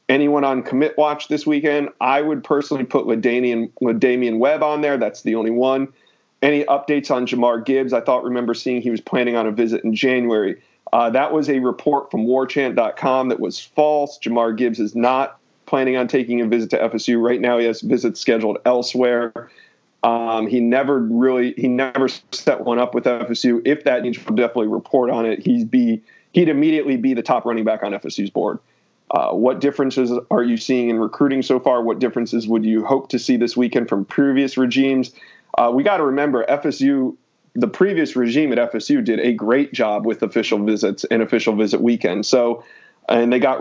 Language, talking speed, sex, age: English, 195 wpm, male, 40-59